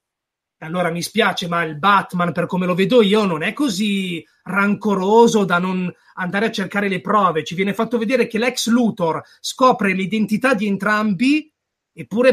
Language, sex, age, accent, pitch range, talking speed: Italian, male, 30-49, native, 185-225 Hz, 165 wpm